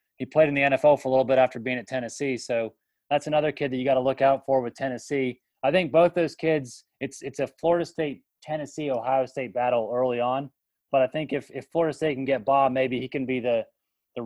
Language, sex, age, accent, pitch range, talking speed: English, male, 30-49, American, 125-145 Hz, 235 wpm